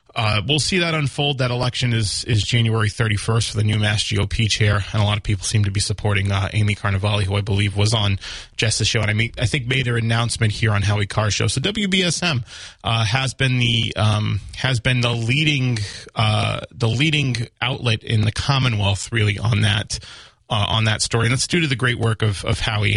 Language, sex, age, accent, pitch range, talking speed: English, male, 30-49, American, 105-120 Hz, 215 wpm